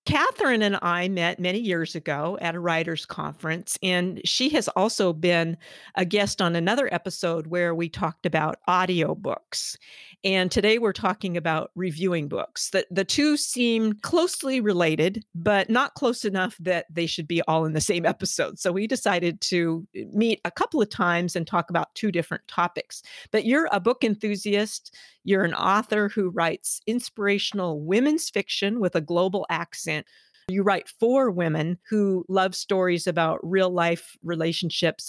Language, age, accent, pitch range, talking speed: English, 50-69, American, 170-200 Hz, 160 wpm